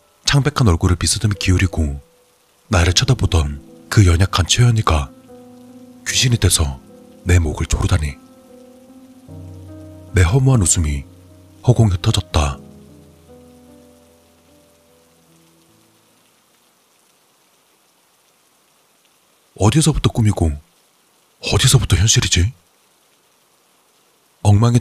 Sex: male